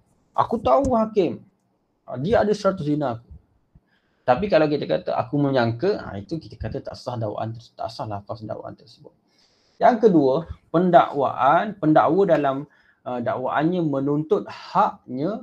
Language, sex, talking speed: Malay, male, 130 wpm